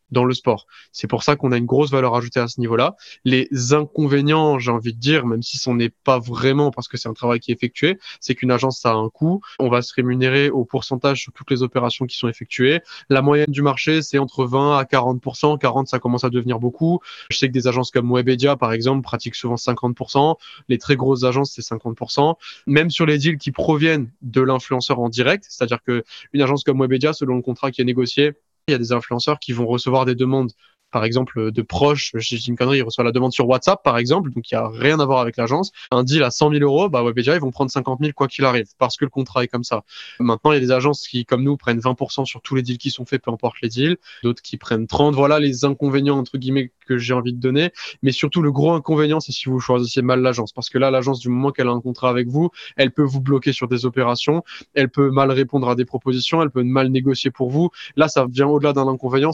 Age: 20-39